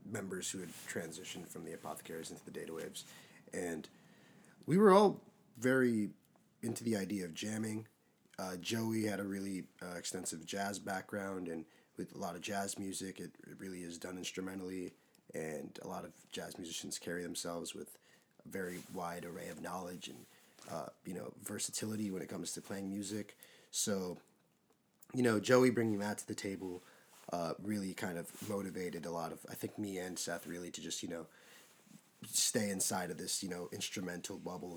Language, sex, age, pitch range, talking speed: English, male, 30-49, 90-110 Hz, 180 wpm